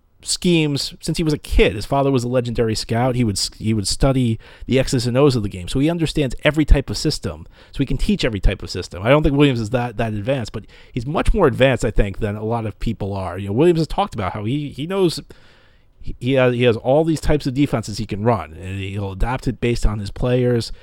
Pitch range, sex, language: 105-145 Hz, male, English